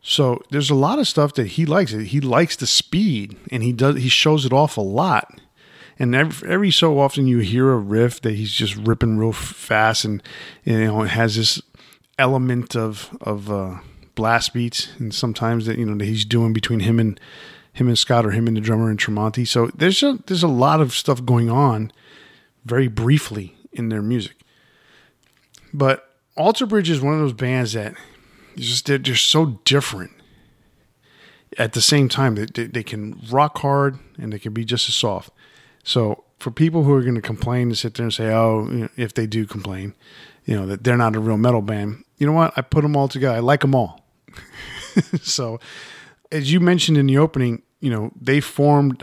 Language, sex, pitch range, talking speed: English, male, 110-140 Hz, 205 wpm